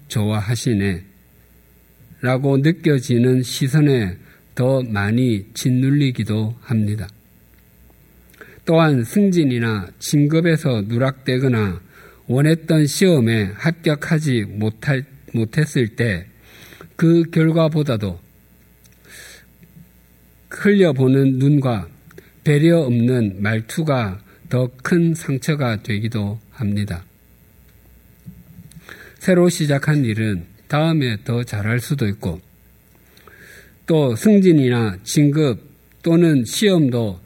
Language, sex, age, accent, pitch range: Korean, male, 50-69, native, 105-145 Hz